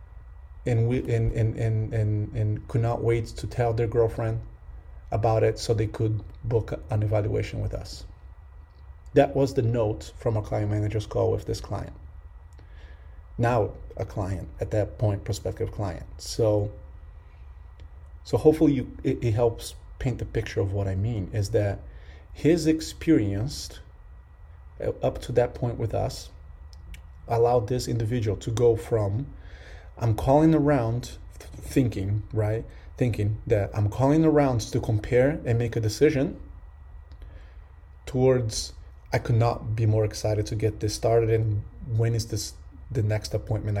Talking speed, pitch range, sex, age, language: 150 wpm, 80-115 Hz, male, 30-49, English